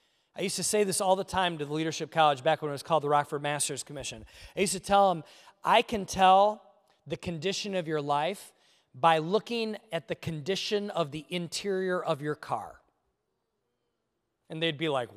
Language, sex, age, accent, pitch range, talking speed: English, male, 30-49, American, 150-195 Hz, 195 wpm